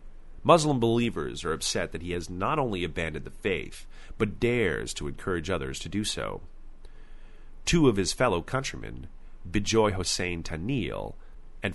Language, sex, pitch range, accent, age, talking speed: English, male, 85-115 Hz, American, 30-49, 150 wpm